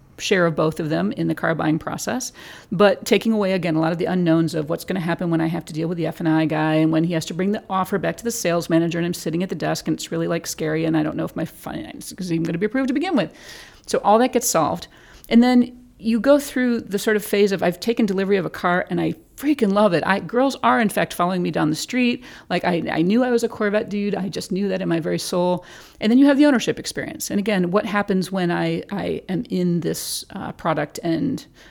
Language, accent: English, American